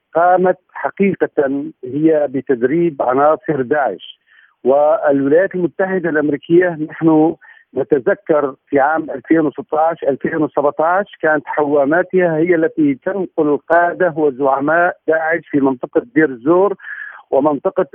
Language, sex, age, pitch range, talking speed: Arabic, male, 50-69, 155-195 Hz, 85 wpm